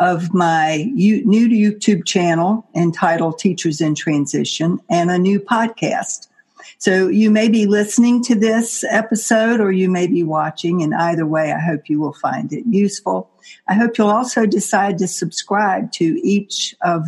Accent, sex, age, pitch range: American, female, 60-79, 170-220 Hz